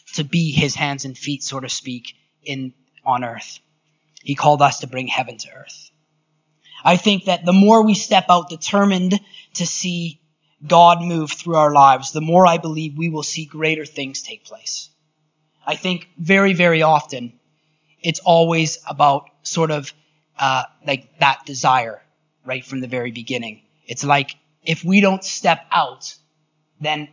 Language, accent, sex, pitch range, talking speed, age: English, American, male, 140-165 Hz, 165 wpm, 30-49